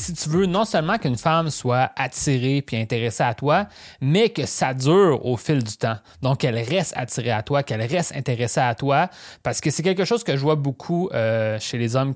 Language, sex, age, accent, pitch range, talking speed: French, male, 30-49, Canadian, 120-160 Hz, 220 wpm